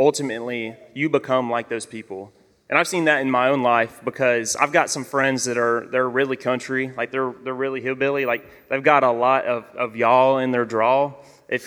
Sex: male